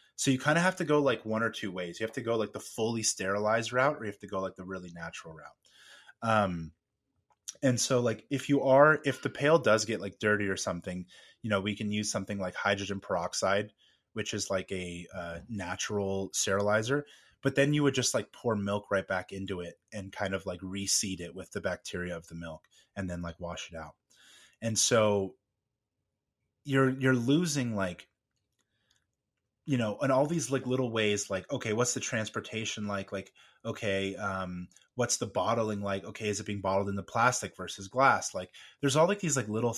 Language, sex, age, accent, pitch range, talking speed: English, male, 20-39, American, 95-125 Hz, 205 wpm